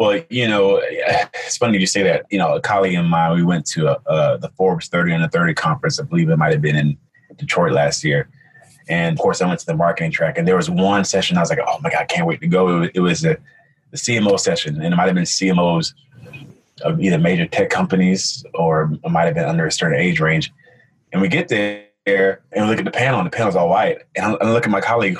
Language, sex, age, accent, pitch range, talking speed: English, male, 30-49, American, 95-155 Hz, 260 wpm